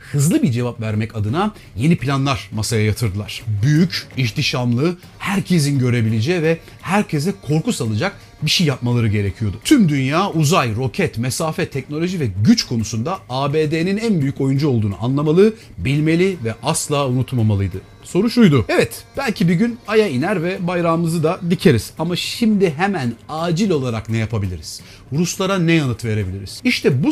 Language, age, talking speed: Turkish, 40-59, 145 wpm